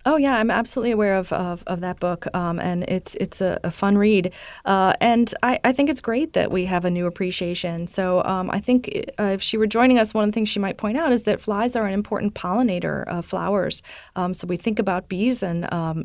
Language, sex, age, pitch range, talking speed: English, female, 30-49, 175-205 Hz, 245 wpm